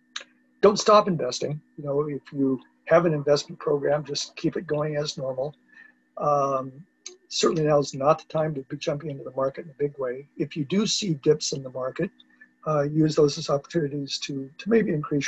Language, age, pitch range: English, 50-69, 135-160 Hz